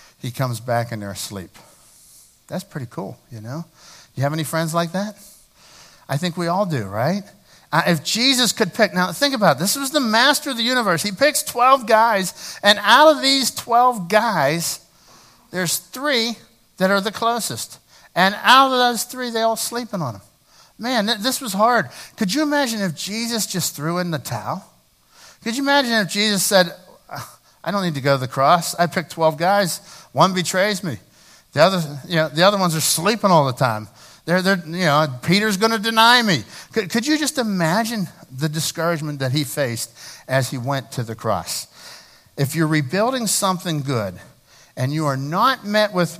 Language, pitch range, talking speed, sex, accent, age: English, 145-220 Hz, 190 wpm, male, American, 50-69